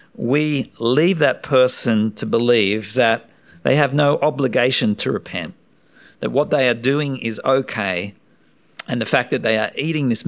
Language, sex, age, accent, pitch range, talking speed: English, male, 50-69, Australian, 110-145 Hz, 165 wpm